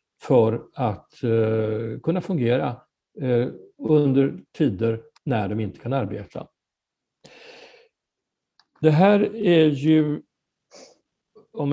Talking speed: 90 wpm